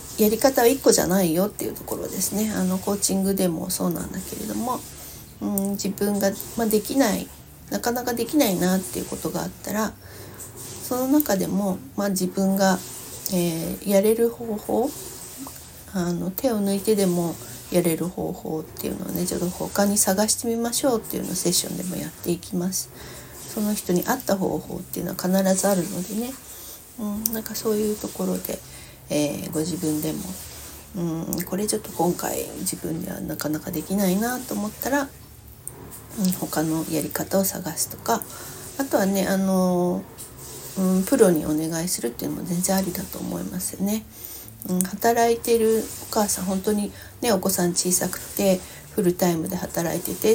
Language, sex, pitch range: Japanese, female, 165-210 Hz